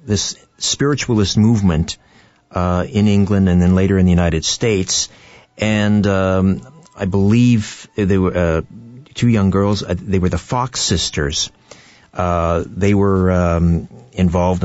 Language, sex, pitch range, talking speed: English, male, 80-100 Hz, 140 wpm